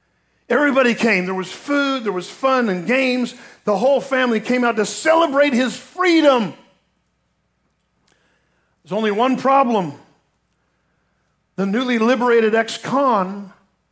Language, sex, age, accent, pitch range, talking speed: English, male, 50-69, American, 185-245 Hz, 115 wpm